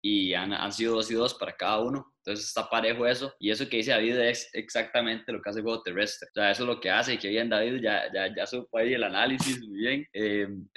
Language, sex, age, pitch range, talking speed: Spanish, male, 20-39, 110-140 Hz, 275 wpm